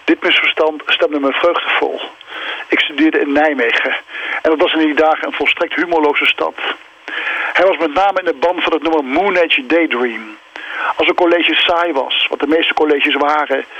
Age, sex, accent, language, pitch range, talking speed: 50-69, male, Dutch, Dutch, 150-180 Hz, 185 wpm